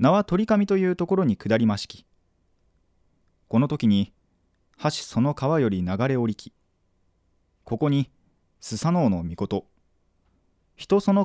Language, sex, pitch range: Japanese, male, 90-130 Hz